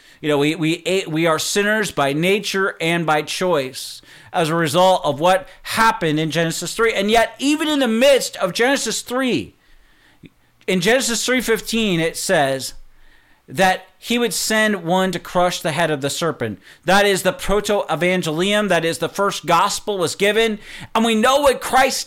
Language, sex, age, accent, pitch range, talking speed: English, male, 40-59, American, 175-230 Hz, 170 wpm